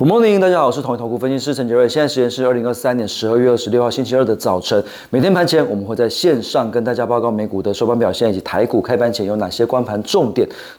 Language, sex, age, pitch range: Chinese, male, 30-49, 100-125 Hz